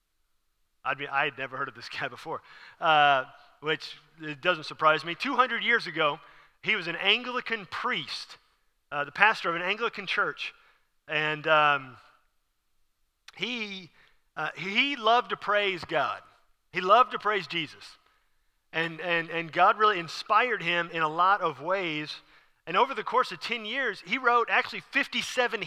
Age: 40-59